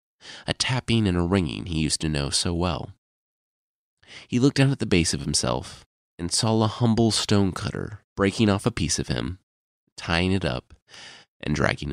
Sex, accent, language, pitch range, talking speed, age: male, American, English, 80-105 Hz, 175 wpm, 30-49